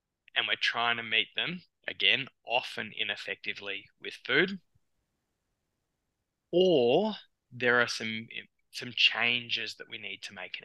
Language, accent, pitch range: English, Australian, 115-155 Hz